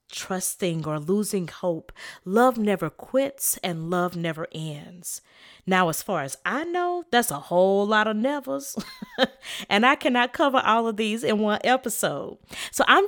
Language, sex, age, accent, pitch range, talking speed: English, female, 40-59, American, 175-265 Hz, 160 wpm